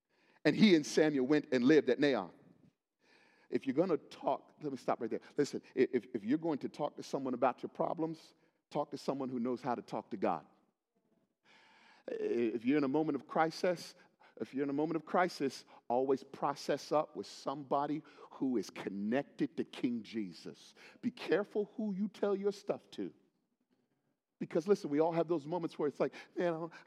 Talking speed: 190 wpm